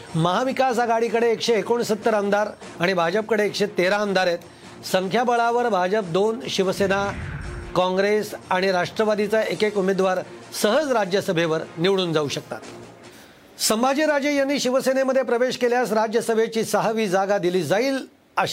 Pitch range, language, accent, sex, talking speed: 185-225 Hz, Marathi, native, male, 90 wpm